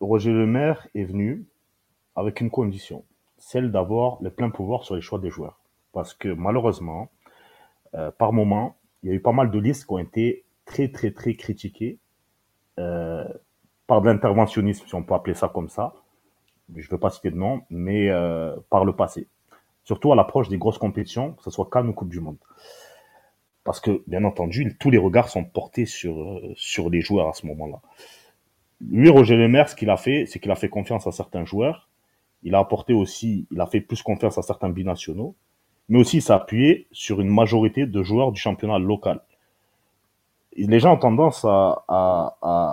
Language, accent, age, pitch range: French, French, 30-49, 95-115 Hz